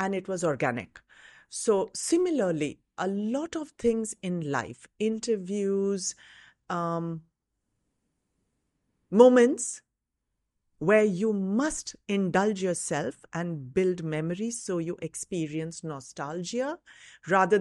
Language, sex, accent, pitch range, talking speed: English, female, Indian, 170-215 Hz, 95 wpm